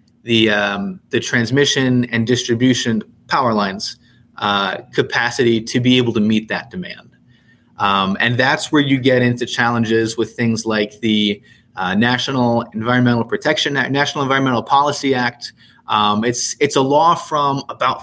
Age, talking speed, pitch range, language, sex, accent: 30-49, 150 wpm, 120-140 Hz, English, male, American